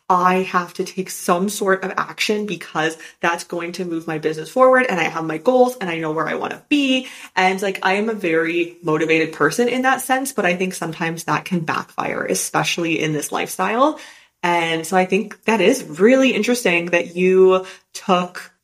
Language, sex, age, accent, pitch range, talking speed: English, female, 20-39, American, 165-210 Hz, 200 wpm